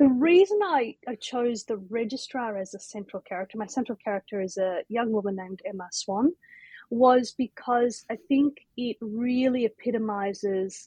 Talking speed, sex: 155 wpm, female